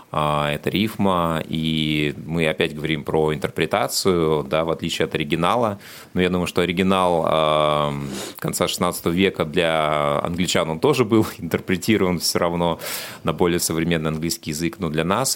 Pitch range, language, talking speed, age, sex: 75-90 Hz, Russian, 145 wpm, 30-49, male